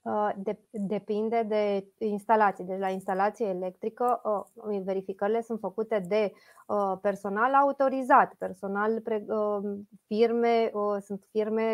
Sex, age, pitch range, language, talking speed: female, 20-39, 195-225 Hz, Romanian, 85 wpm